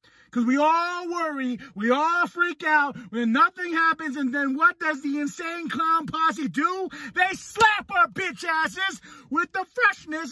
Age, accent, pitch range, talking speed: 30-49, American, 245-350 Hz, 165 wpm